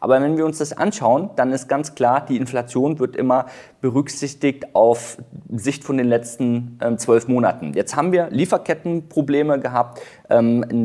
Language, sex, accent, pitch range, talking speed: German, male, German, 120-155 Hz, 155 wpm